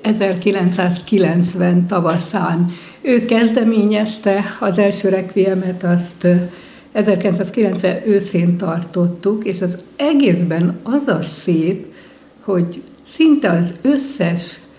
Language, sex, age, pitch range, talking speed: Hungarian, female, 60-79, 180-220 Hz, 85 wpm